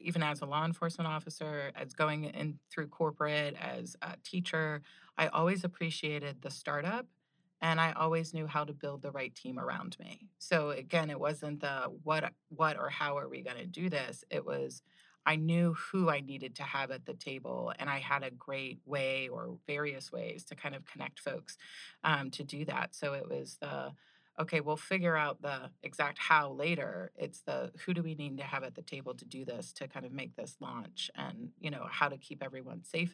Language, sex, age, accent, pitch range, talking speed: English, female, 30-49, American, 135-165 Hz, 210 wpm